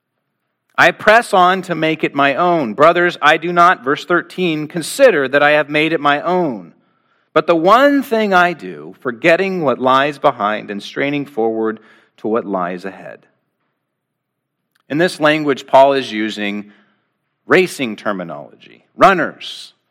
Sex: male